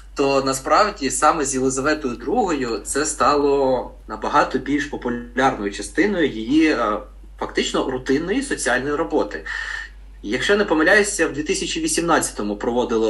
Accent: native